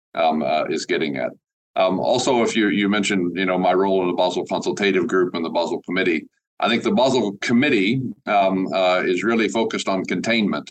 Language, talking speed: English, 200 wpm